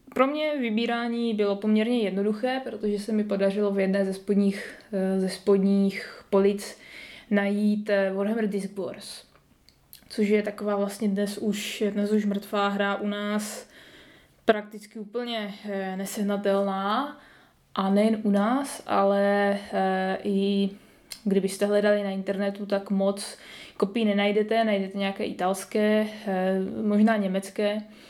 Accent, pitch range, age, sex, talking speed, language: native, 195-215 Hz, 20-39, female, 115 wpm, Czech